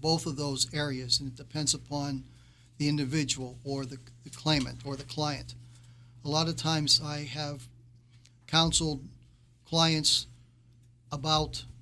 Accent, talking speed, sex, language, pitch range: American, 130 wpm, male, English, 120-155 Hz